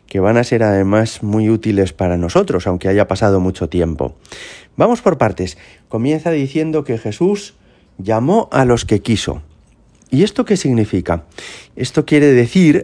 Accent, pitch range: Spanish, 95-125 Hz